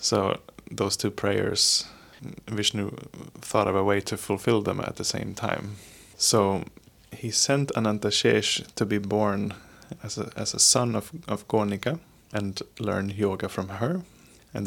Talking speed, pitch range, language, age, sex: 150 wpm, 100-115 Hz, English, 20-39, male